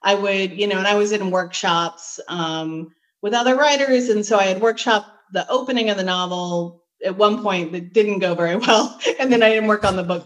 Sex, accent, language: female, American, English